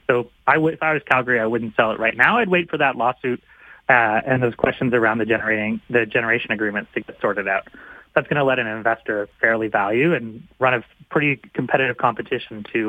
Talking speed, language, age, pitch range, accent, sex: 210 wpm, English, 30-49, 110-135 Hz, American, male